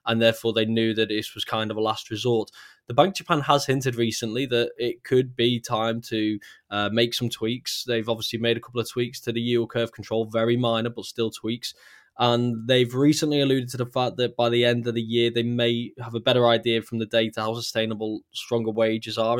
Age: 10-29